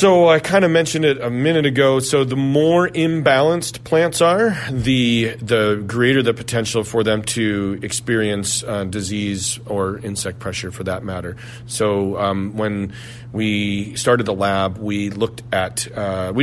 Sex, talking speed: male, 160 wpm